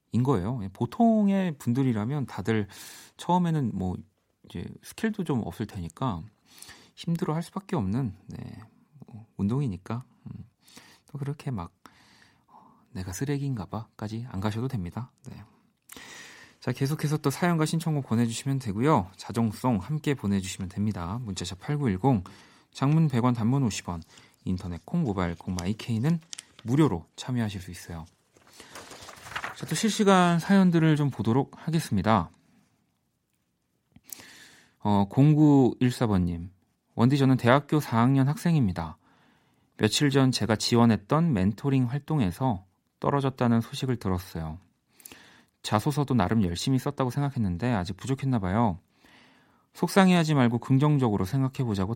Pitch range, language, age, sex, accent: 100-140 Hz, Korean, 40-59, male, native